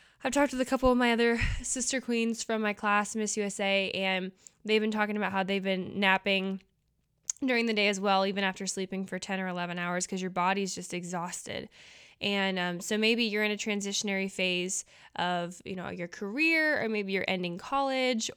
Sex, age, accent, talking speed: female, 10-29, American, 200 wpm